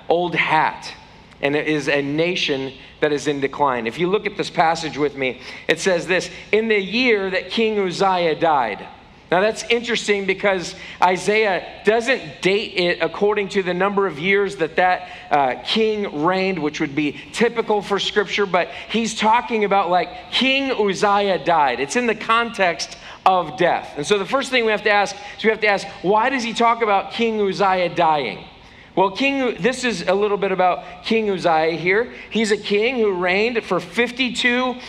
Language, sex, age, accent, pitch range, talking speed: English, male, 40-59, American, 185-235 Hz, 185 wpm